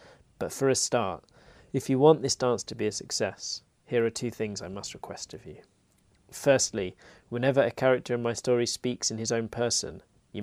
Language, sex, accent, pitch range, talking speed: English, male, British, 100-130 Hz, 200 wpm